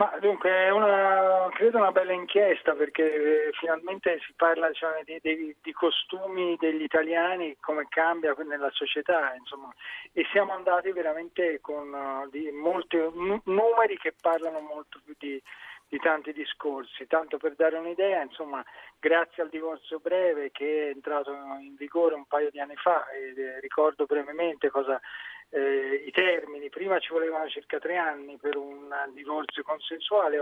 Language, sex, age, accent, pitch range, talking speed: Italian, male, 40-59, native, 145-185 Hz, 150 wpm